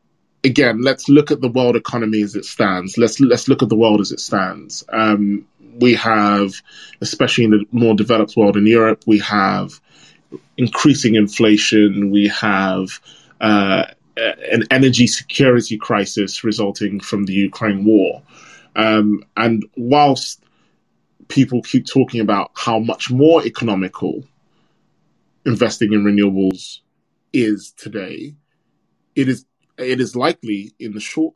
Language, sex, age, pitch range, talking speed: English, male, 20-39, 105-120 Hz, 135 wpm